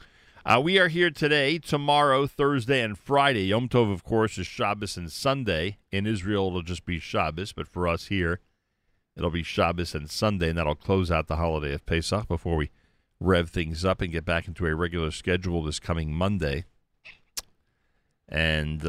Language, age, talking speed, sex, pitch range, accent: English, 40-59, 180 wpm, male, 80-105 Hz, American